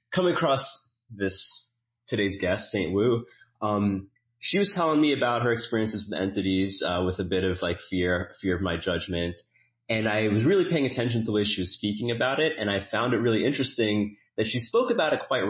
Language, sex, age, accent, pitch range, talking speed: English, male, 30-49, American, 95-120 Hz, 210 wpm